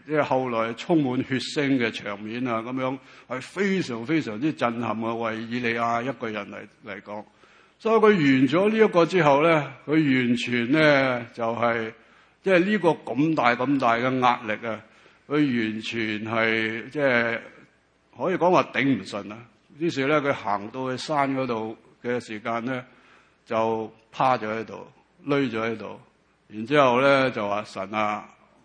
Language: English